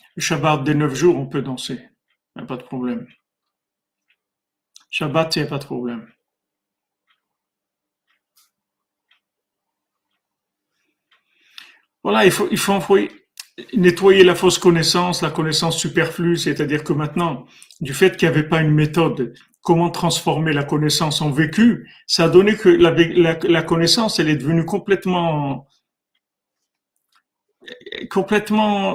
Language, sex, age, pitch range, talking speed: French, male, 50-69, 150-175 Hz, 130 wpm